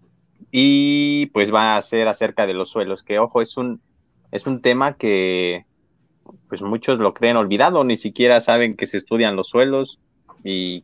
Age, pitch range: 30-49, 100-130 Hz